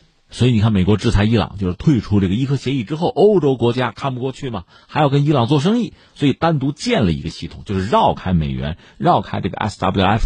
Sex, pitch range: male, 95-155 Hz